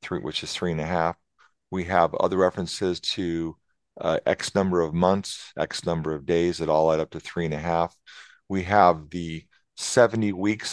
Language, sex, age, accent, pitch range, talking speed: English, male, 50-69, American, 80-95 Hz, 190 wpm